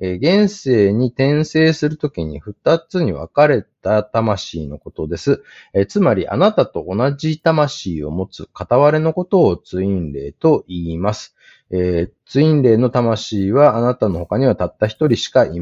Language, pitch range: Japanese, 95-140 Hz